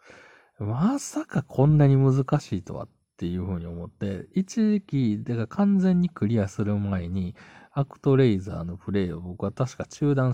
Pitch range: 90-130 Hz